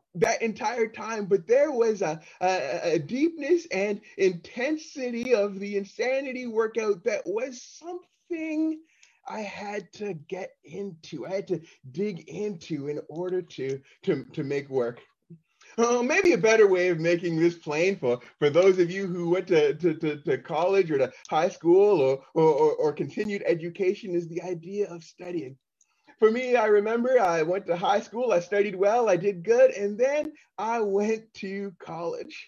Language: English